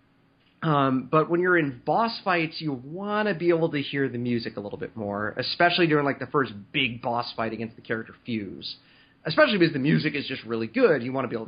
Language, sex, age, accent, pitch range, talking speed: English, male, 30-49, American, 115-155 Hz, 235 wpm